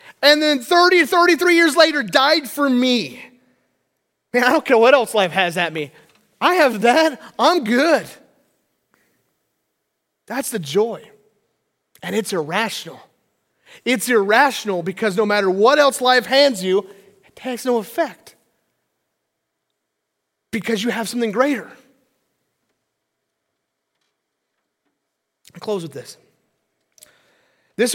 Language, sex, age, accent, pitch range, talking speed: English, male, 30-49, American, 195-285 Hz, 115 wpm